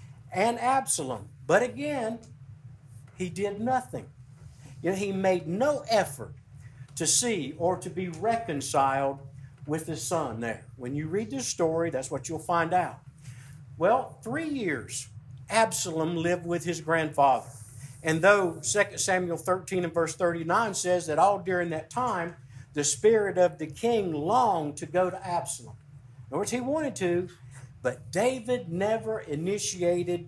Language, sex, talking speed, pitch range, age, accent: English, male, 150 wpm, 135-190 Hz, 50-69, American